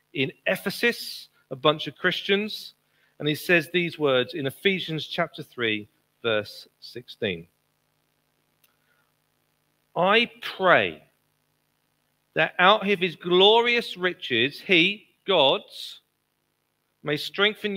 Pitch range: 150-205 Hz